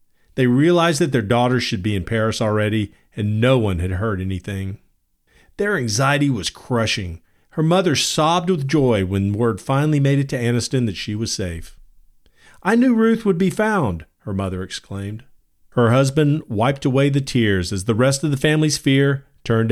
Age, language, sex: 40-59, English, male